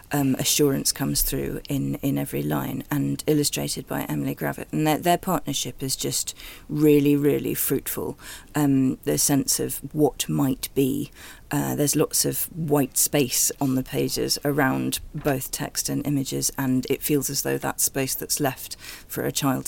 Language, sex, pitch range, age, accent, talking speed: English, female, 130-150 Hz, 40-59, British, 170 wpm